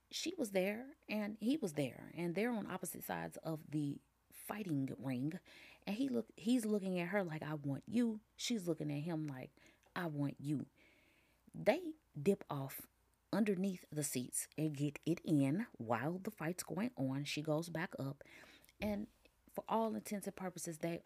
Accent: American